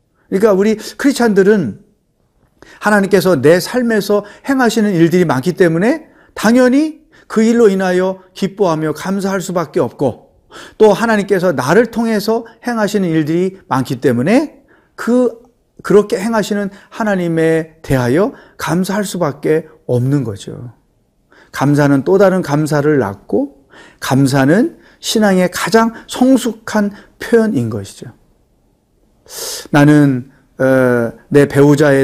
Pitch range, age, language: 145-210 Hz, 40-59, Korean